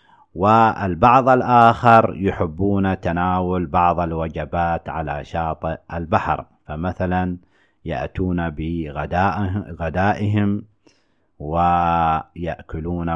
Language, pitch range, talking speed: Arabic, 85-95 Hz, 60 wpm